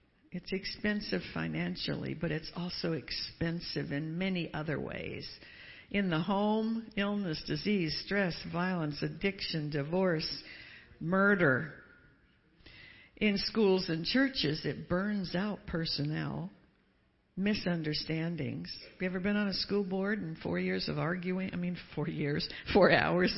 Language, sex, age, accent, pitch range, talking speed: English, female, 60-79, American, 160-205 Hz, 125 wpm